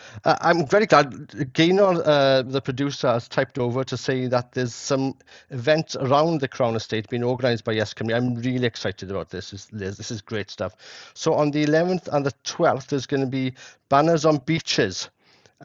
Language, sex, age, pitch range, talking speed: English, male, 50-69, 110-140 Hz, 195 wpm